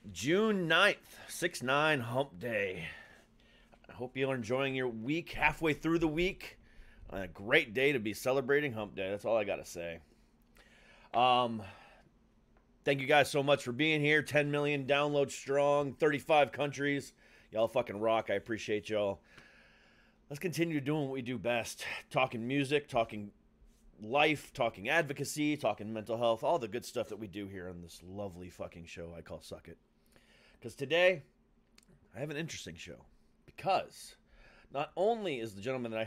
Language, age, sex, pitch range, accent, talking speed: English, 30-49, male, 105-155 Hz, American, 160 wpm